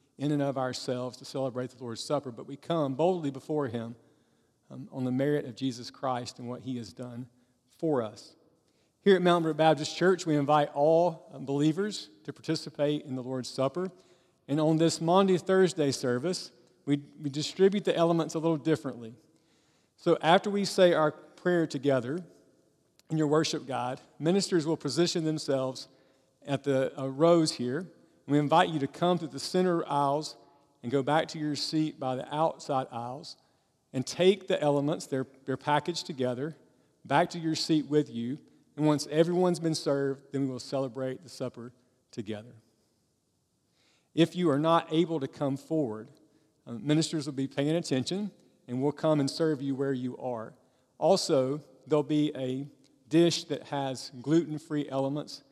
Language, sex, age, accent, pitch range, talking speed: English, male, 50-69, American, 130-160 Hz, 170 wpm